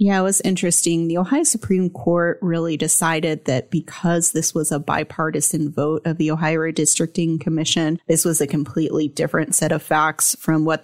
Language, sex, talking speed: English, female, 175 wpm